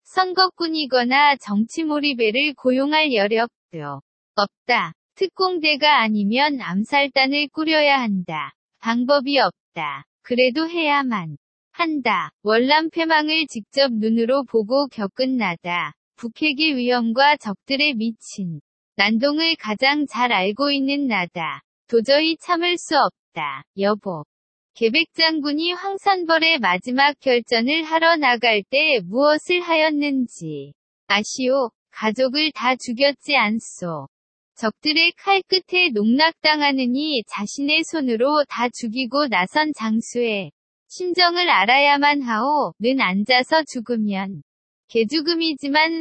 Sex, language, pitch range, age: female, Korean, 225-305 Hz, 20-39